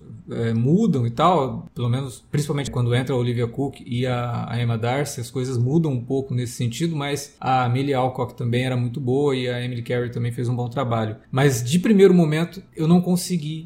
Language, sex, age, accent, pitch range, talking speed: Portuguese, male, 20-39, Brazilian, 130-170 Hz, 210 wpm